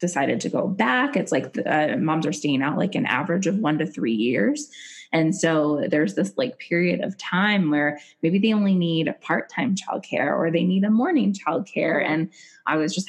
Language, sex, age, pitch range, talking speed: English, female, 20-39, 155-205 Hz, 220 wpm